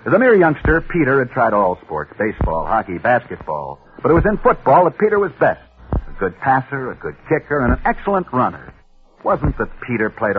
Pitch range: 125-185 Hz